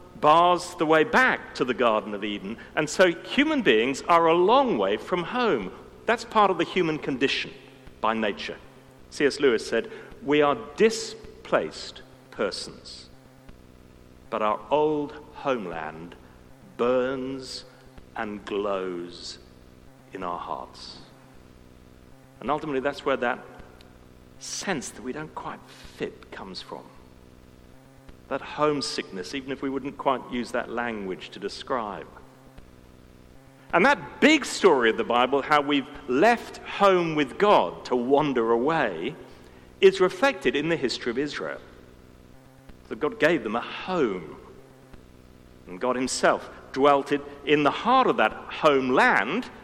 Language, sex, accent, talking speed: English, male, British, 130 wpm